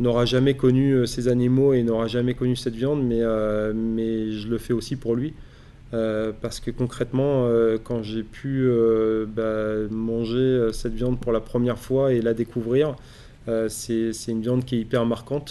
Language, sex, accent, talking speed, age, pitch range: French, male, French, 190 wpm, 20-39, 115-130 Hz